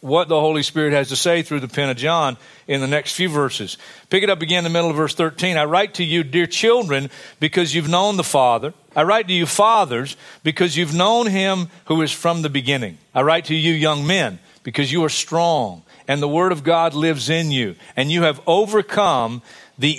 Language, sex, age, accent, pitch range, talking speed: English, male, 50-69, American, 145-195 Hz, 225 wpm